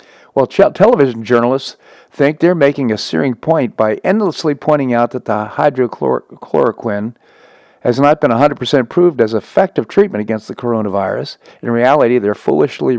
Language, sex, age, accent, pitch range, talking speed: English, male, 50-69, American, 110-140 Hz, 145 wpm